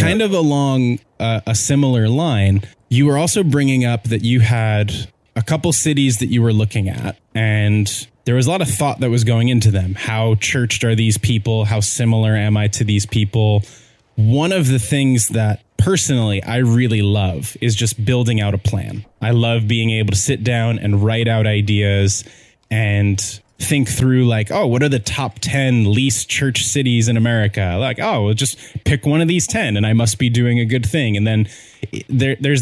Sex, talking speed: male, 195 wpm